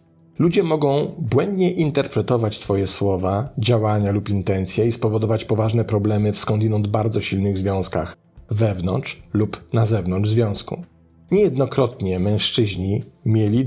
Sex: male